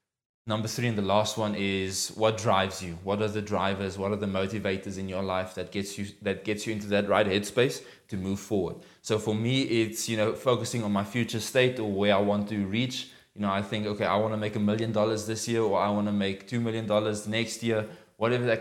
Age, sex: 20-39, male